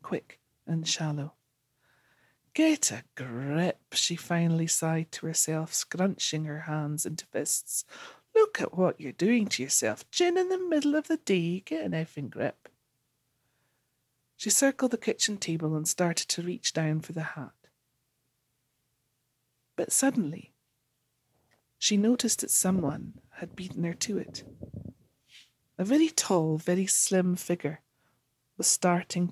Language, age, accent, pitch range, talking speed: English, 40-59, British, 145-195 Hz, 135 wpm